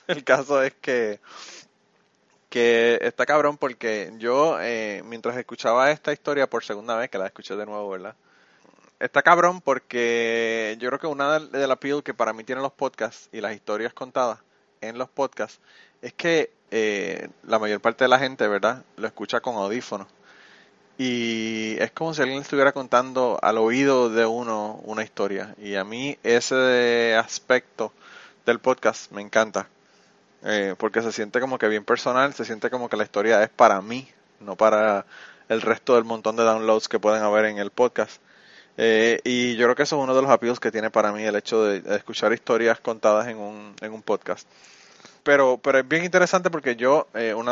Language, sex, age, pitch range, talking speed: Spanish, male, 20-39, 110-130 Hz, 185 wpm